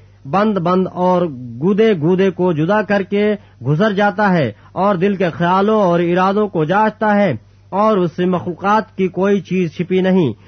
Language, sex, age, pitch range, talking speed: Urdu, male, 40-59, 175-205 Hz, 170 wpm